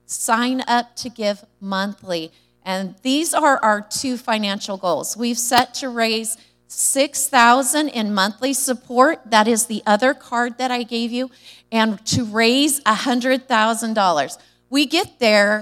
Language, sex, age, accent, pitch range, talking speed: English, female, 30-49, American, 205-255 Hz, 140 wpm